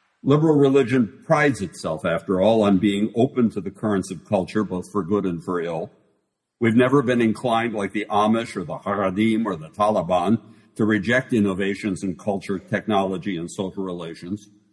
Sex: male